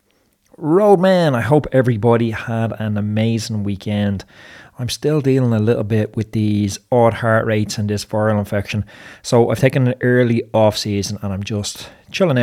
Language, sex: English, male